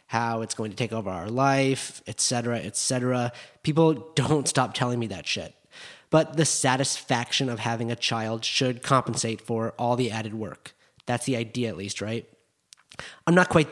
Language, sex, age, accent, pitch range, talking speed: English, male, 30-49, American, 115-145 Hz, 175 wpm